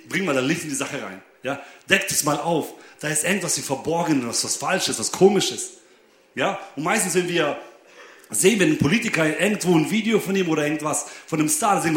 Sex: male